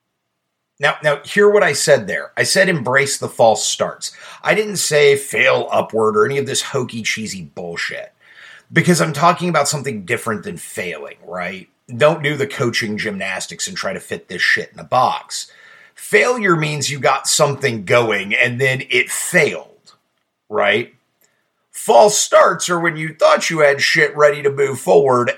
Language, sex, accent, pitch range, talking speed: English, male, American, 115-175 Hz, 170 wpm